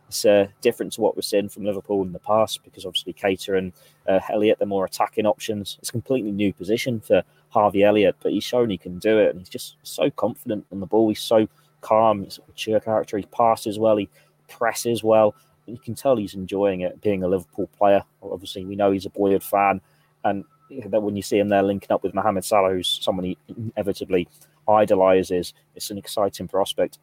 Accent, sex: British, male